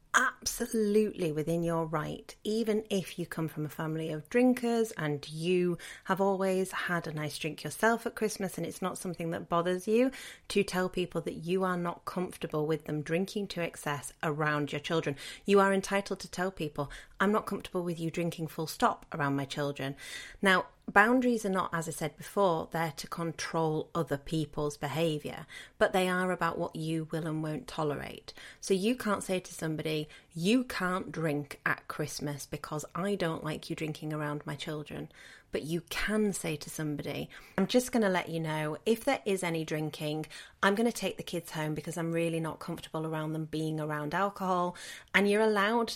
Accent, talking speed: British, 190 wpm